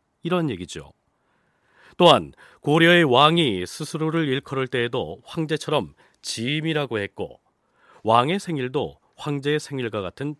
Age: 40-59